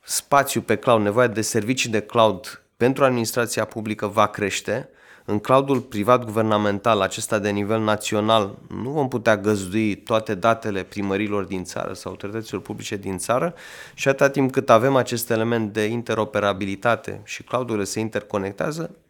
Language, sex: Romanian, male